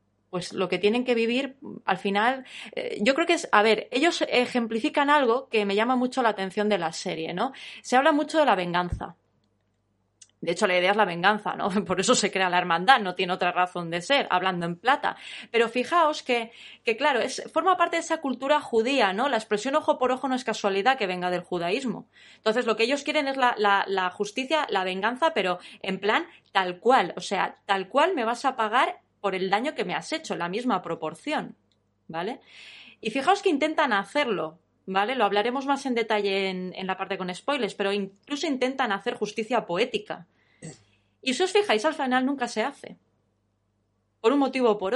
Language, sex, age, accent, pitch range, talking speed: Spanish, female, 20-39, Spanish, 185-265 Hz, 205 wpm